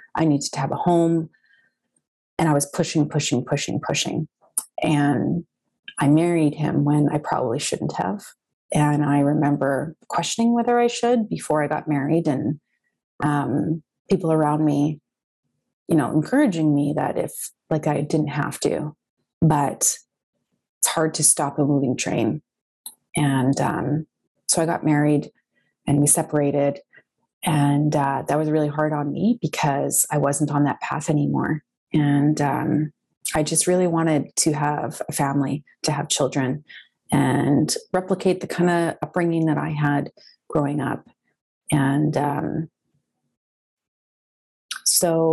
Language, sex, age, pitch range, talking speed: English, female, 30-49, 145-160 Hz, 145 wpm